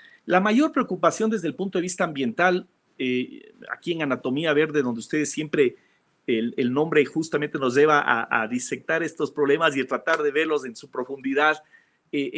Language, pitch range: English, 135-175 Hz